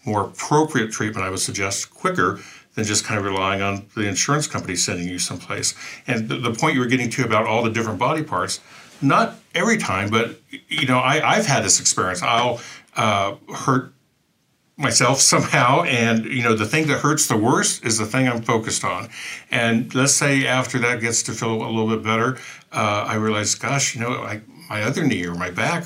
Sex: male